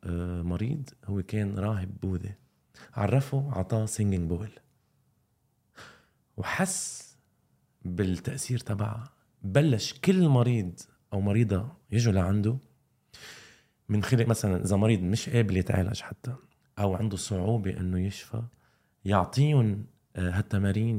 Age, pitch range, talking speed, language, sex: 20-39, 95-120 Hz, 100 wpm, Arabic, male